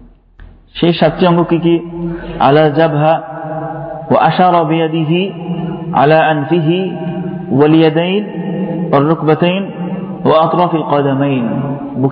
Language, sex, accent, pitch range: Bengali, male, native, 150-175 Hz